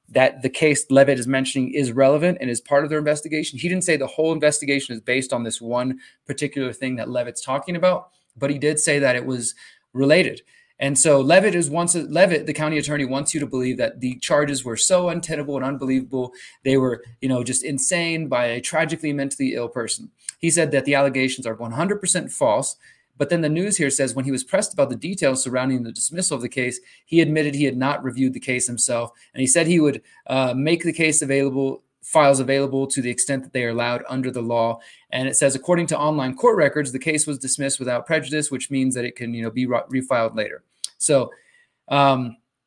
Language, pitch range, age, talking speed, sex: English, 130-155 Hz, 20-39, 220 wpm, male